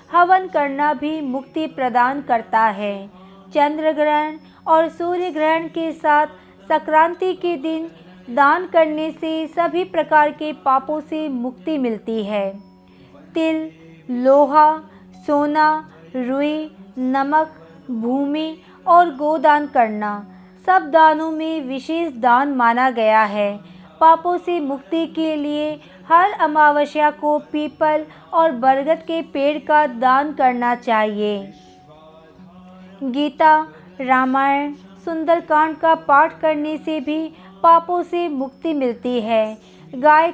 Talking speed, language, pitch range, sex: 115 wpm, Hindi, 245-315 Hz, female